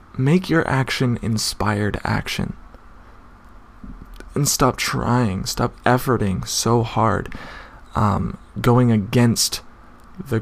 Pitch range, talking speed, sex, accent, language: 100-120 Hz, 90 wpm, male, American, English